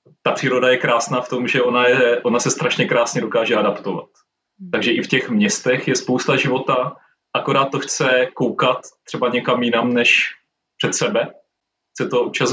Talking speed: 170 wpm